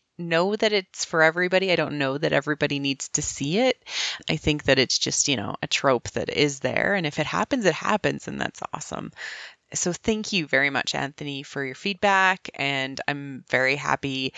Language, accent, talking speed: English, American, 200 wpm